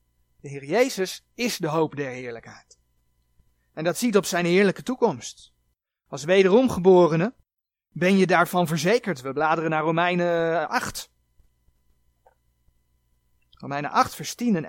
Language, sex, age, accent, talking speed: Dutch, male, 30-49, Dutch, 125 wpm